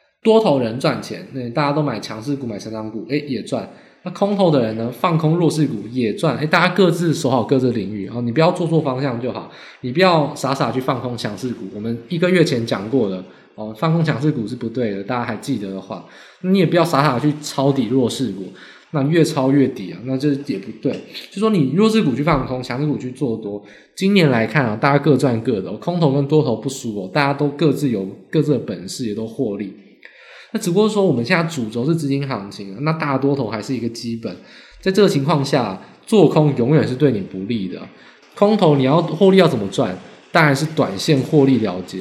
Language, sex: Chinese, male